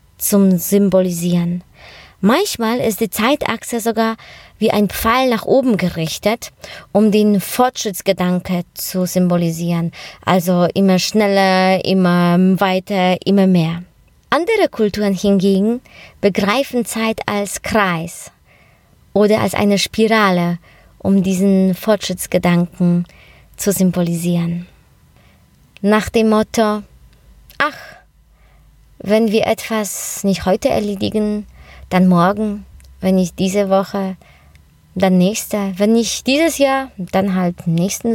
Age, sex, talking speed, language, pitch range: 20-39, female, 100 wpm, German, 180-220 Hz